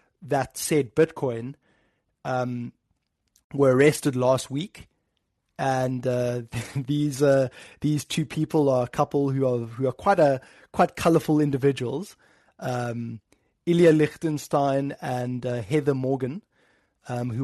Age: 20-39